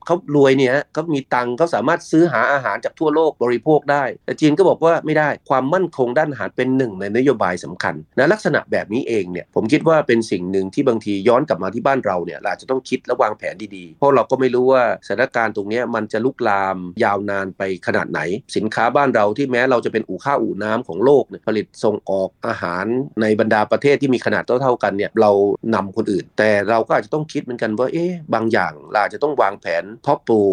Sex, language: male, Thai